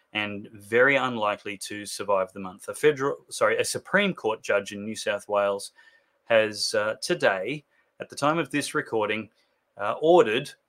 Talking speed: 165 wpm